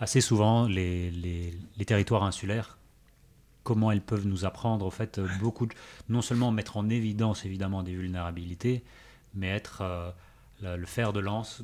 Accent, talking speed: French, 165 wpm